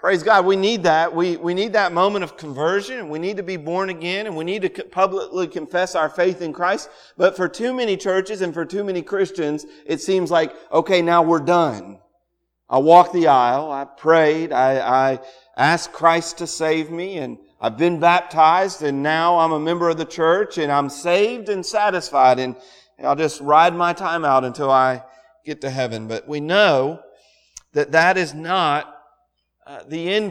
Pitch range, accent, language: 160-230 Hz, American, English